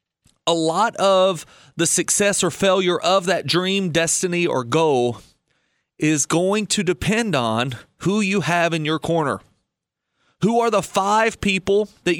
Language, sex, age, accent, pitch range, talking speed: English, male, 30-49, American, 150-195 Hz, 150 wpm